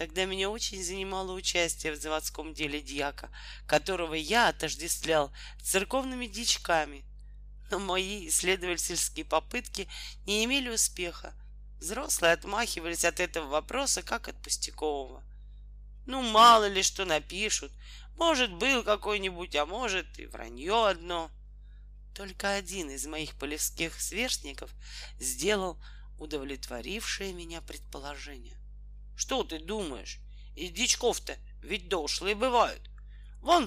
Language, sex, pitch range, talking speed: Russian, male, 155-225 Hz, 110 wpm